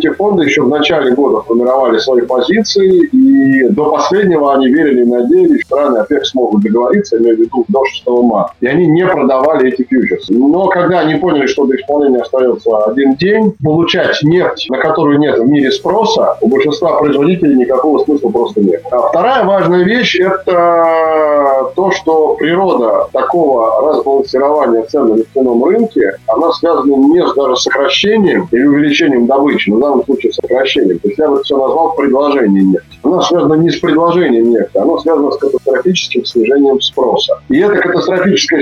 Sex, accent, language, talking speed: male, native, Russian, 165 wpm